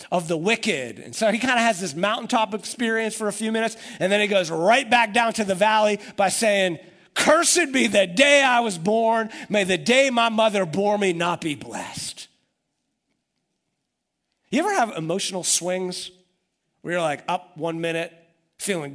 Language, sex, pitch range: English, male, 130-190 Hz